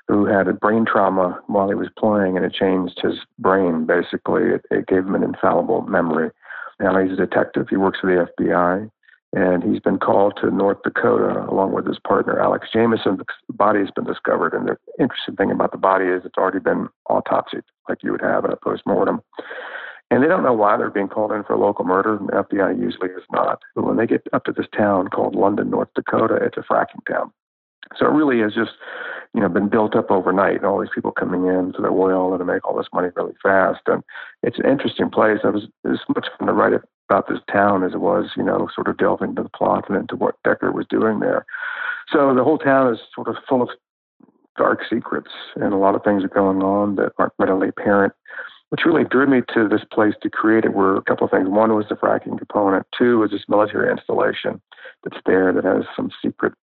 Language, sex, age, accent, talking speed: English, male, 50-69, American, 230 wpm